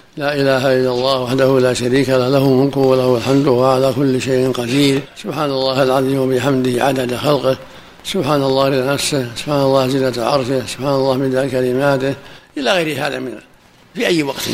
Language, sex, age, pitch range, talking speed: Arabic, male, 60-79, 130-155 Hz, 165 wpm